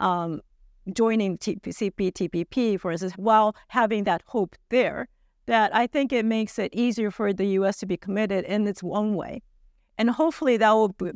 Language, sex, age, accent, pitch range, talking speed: English, female, 50-69, American, 180-220 Hz, 165 wpm